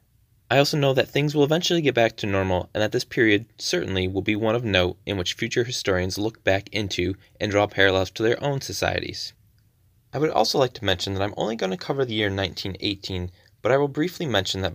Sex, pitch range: male, 95-120 Hz